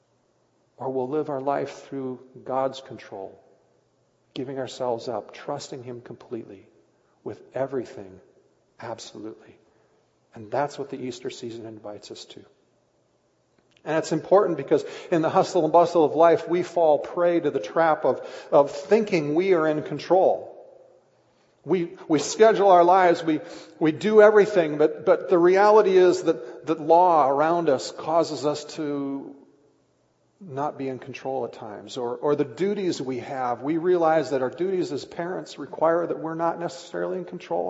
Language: English